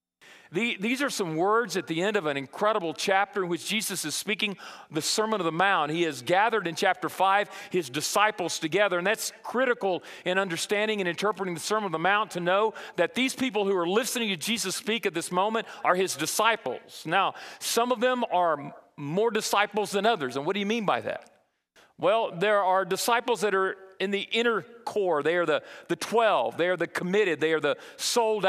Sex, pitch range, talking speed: male, 180-220 Hz, 205 wpm